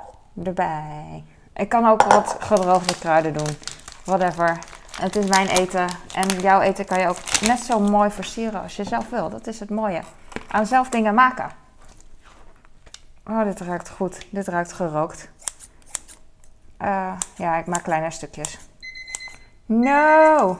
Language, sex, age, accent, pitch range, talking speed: Dutch, female, 20-39, Dutch, 180-240 Hz, 145 wpm